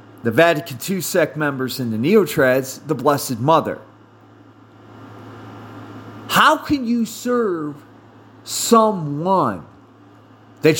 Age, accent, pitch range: 40-59, American, 120-180 Hz